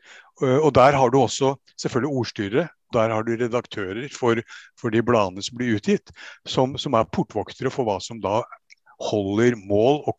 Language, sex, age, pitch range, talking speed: English, male, 60-79, 115-155 Hz, 175 wpm